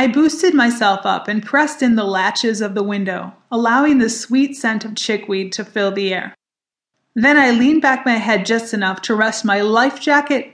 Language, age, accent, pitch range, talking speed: English, 30-49, American, 195-235 Hz, 200 wpm